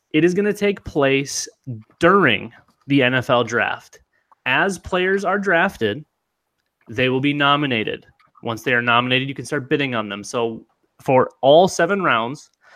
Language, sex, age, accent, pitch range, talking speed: English, male, 30-49, American, 120-155 Hz, 155 wpm